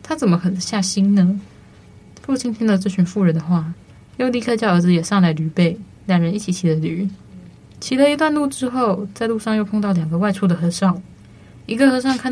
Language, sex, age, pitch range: Chinese, female, 20-39, 175-210 Hz